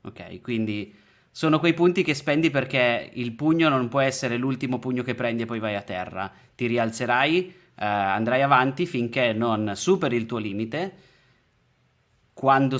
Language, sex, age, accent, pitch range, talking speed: Italian, male, 20-39, native, 110-130 Hz, 160 wpm